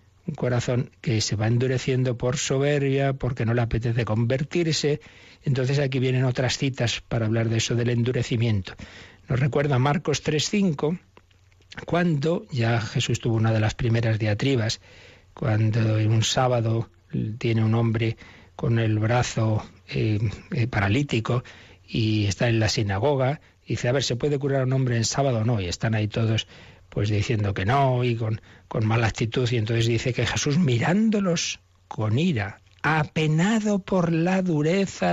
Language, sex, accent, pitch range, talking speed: Spanish, male, Spanish, 105-135 Hz, 160 wpm